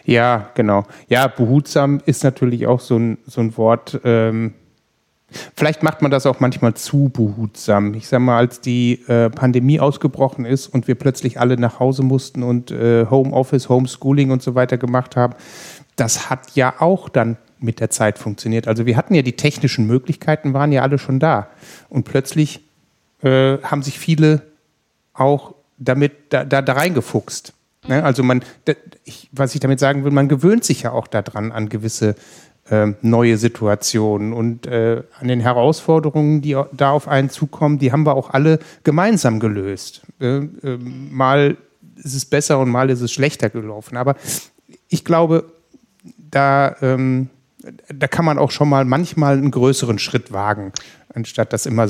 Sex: male